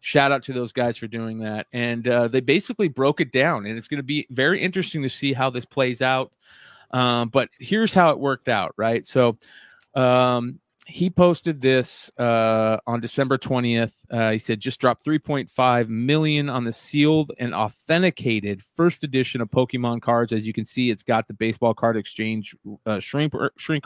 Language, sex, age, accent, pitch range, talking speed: English, male, 30-49, American, 120-160 Hz, 190 wpm